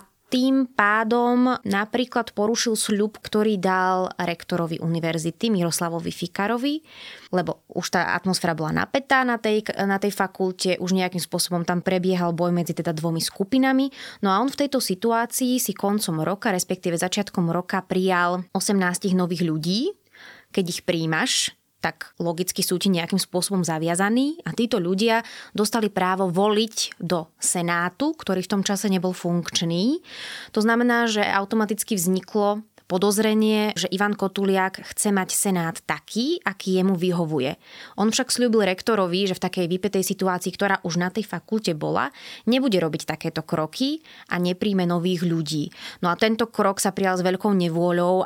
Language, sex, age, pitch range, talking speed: Slovak, female, 20-39, 175-215 Hz, 150 wpm